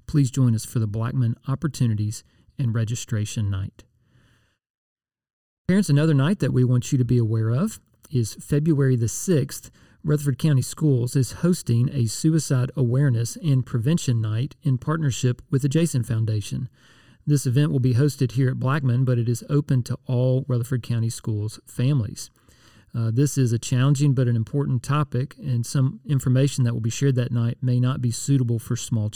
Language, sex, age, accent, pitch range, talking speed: English, male, 40-59, American, 115-140 Hz, 175 wpm